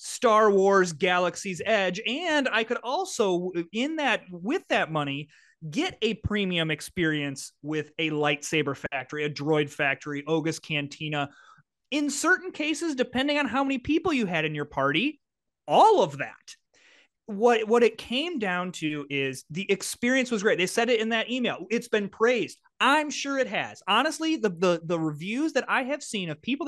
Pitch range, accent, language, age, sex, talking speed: 170-245 Hz, American, English, 30-49, male, 175 wpm